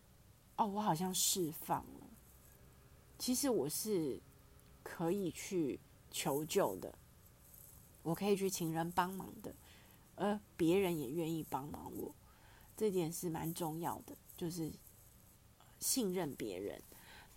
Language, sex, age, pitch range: Chinese, female, 30-49, 150-195 Hz